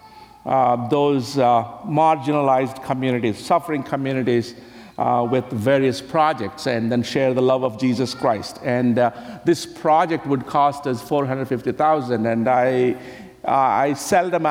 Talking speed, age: 130 wpm, 60-79